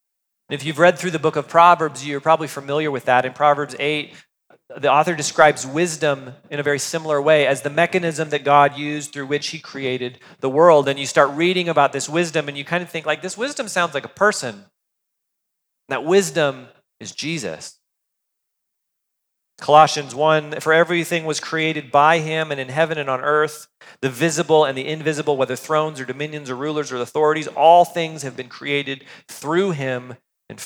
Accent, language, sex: American, English, male